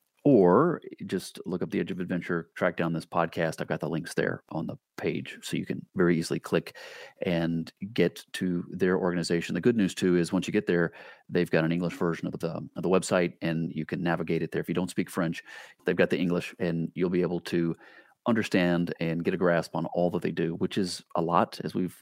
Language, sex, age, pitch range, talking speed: English, male, 30-49, 85-95 Hz, 230 wpm